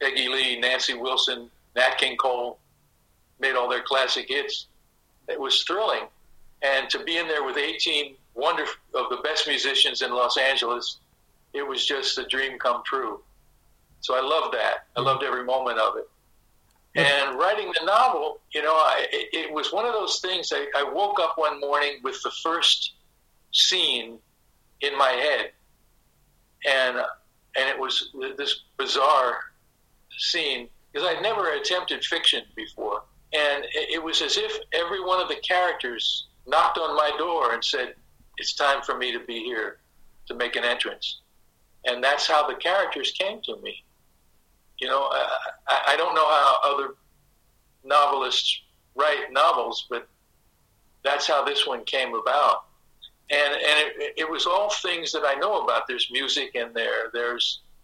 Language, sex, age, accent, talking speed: English, male, 50-69, American, 160 wpm